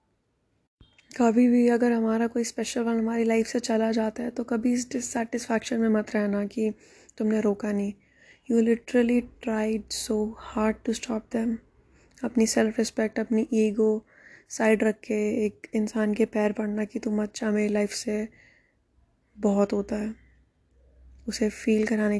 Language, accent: Hindi, native